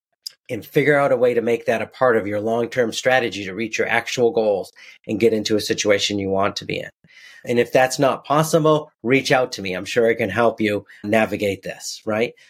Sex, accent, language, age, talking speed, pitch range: male, American, English, 40-59, 225 wpm, 105-130 Hz